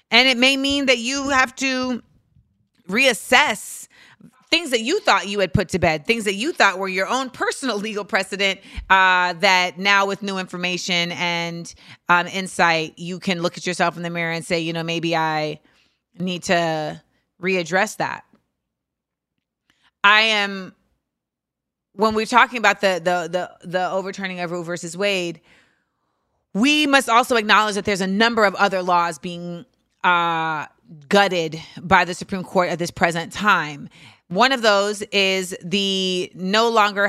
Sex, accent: female, American